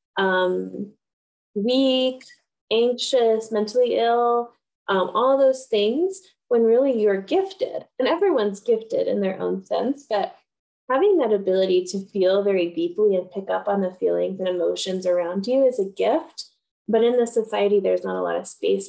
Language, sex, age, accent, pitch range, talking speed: English, female, 10-29, American, 200-320 Hz, 160 wpm